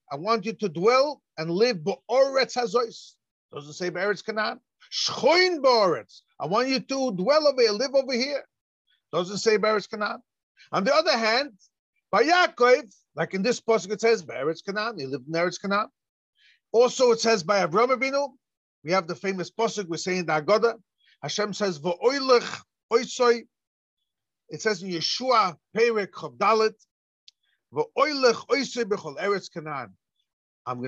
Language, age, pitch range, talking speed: English, 40-59, 170-245 Hz, 125 wpm